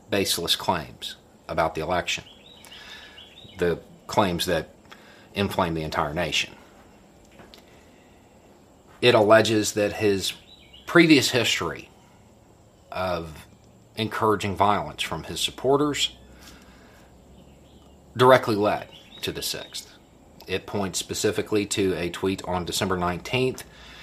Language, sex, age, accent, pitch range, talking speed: English, male, 40-59, American, 85-115 Hz, 95 wpm